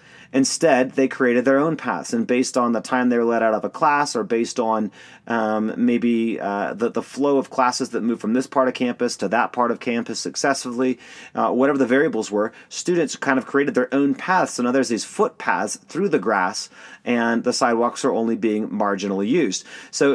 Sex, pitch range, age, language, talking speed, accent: male, 120-150 Hz, 30-49, English, 210 wpm, American